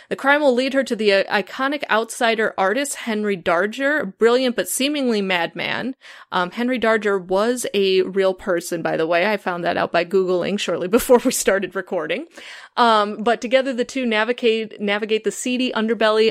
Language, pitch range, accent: English, 190-245 Hz, American